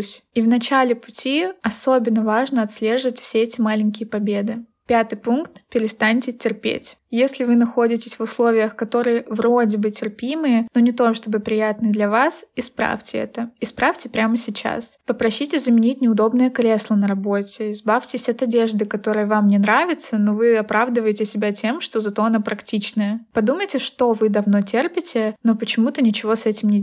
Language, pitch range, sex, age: Russian, 215-240 Hz, female, 20-39